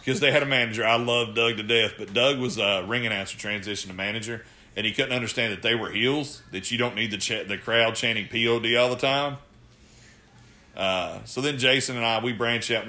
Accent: American